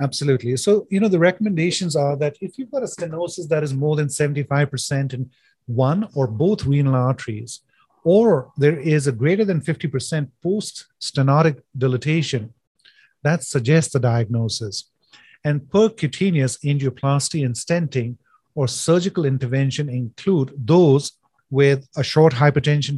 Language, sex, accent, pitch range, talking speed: English, male, Indian, 130-160 Hz, 135 wpm